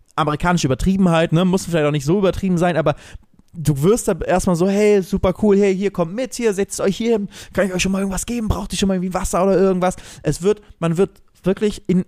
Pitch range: 150-205 Hz